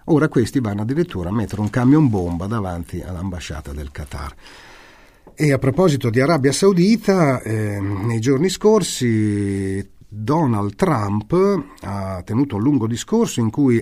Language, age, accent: Italian, 40-59, native